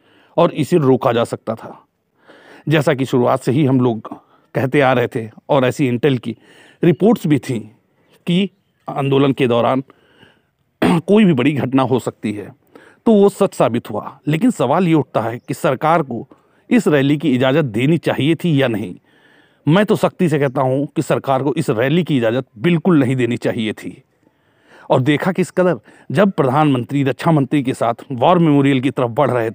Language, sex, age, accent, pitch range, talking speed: Hindi, male, 40-59, native, 130-165 Hz, 185 wpm